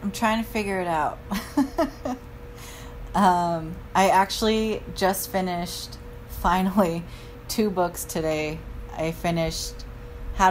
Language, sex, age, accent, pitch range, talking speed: English, female, 20-39, American, 155-180 Hz, 105 wpm